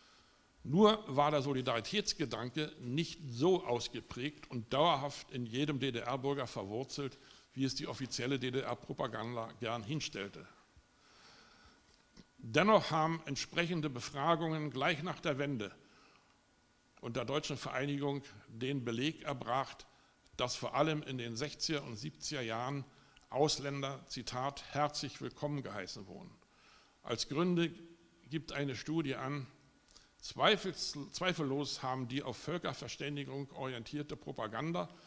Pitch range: 125-150 Hz